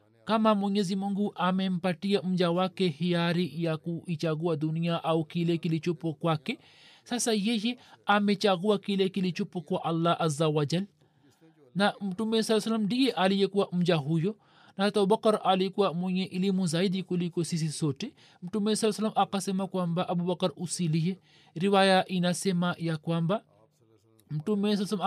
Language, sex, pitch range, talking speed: Swahili, male, 175-210 Hz, 140 wpm